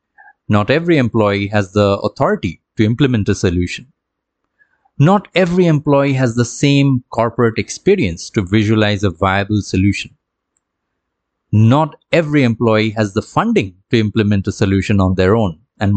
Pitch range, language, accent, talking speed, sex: 105-135 Hz, English, Indian, 140 wpm, male